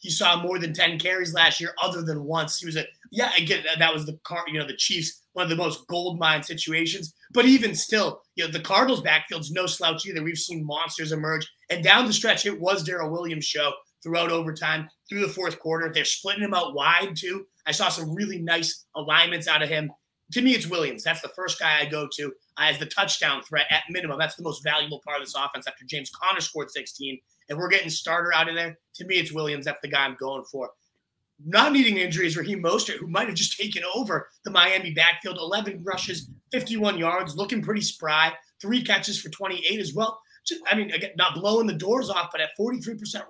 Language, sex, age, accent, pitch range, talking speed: English, male, 30-49, American, 155-195 Hz, 225 wpm